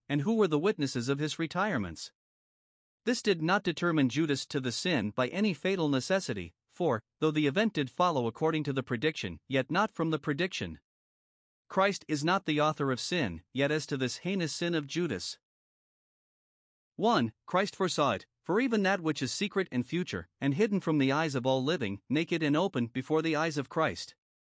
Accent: American